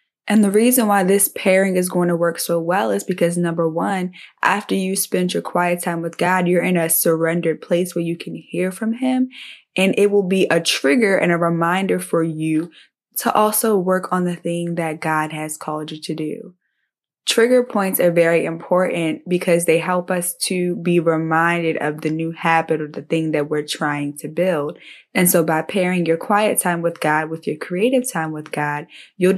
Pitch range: 160-180 Hz